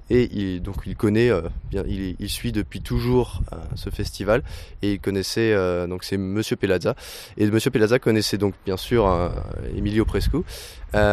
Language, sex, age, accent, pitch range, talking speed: French, male, 20-39, French, 95-110 Hz, 185 wpm